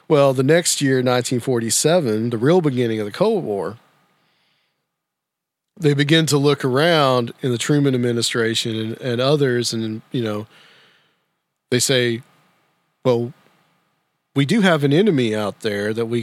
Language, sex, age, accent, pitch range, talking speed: English, male, 40-59, American, 115-140 Hz, 145 wpm